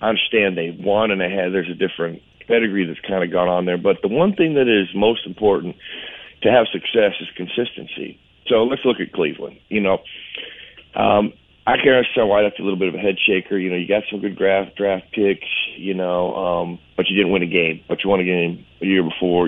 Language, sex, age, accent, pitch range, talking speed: English, male, 40-59, American, 90-105 Hz, 235 wpm